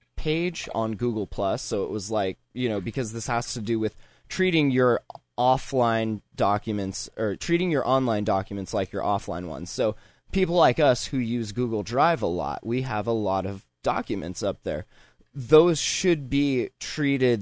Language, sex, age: English, male, 20-39